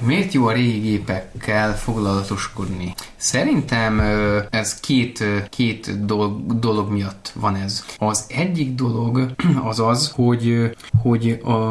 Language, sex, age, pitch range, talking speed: Hungarian, male, 20-39, 100-115 Hz, 115 wpm